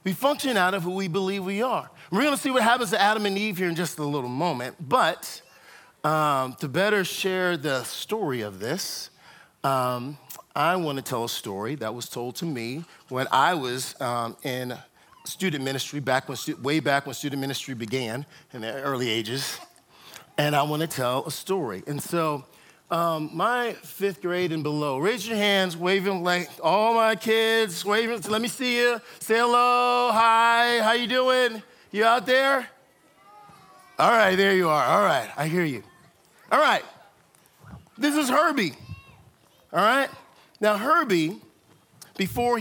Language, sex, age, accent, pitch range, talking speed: English, male, 40-59, American, 145-220 Hz, 170 wpm